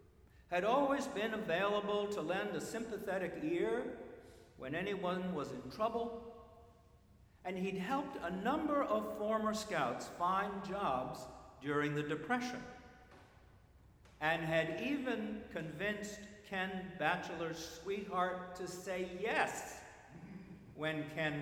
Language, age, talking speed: English, 60-79, 110 wpm